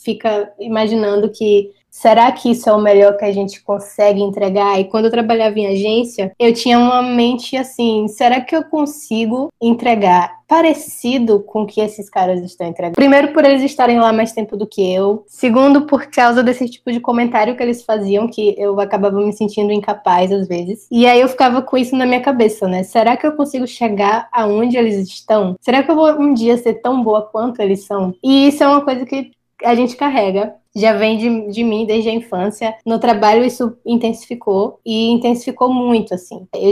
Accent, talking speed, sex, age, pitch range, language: Brazilian, 200 wpm, female, 20-39, 210-245 Hz, Portuguese